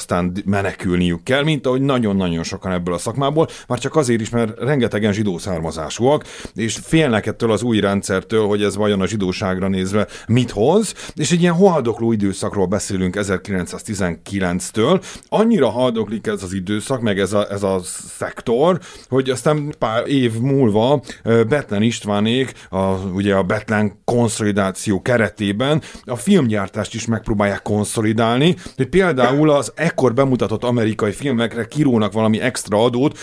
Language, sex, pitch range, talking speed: Hungarian, male, 100-135 Hz, 140 wpm